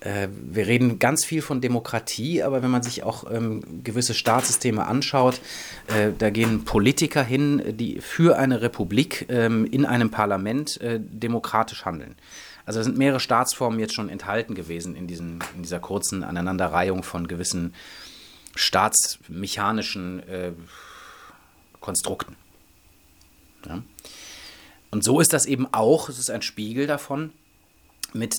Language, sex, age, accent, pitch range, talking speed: German, male, 30-49, German, 95-125 Hz, 130 wpm